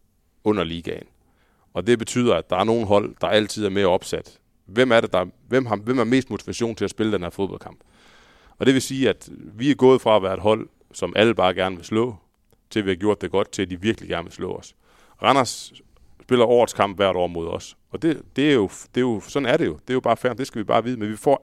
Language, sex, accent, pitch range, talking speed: Danish, male, native, 95-120 Hz, 265 wpm